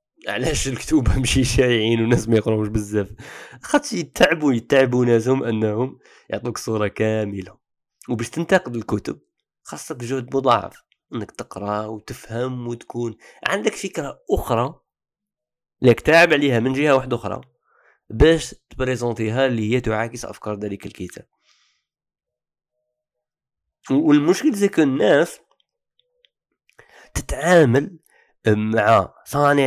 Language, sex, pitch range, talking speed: Arabic, male, 115-170 Hz, 105 wpm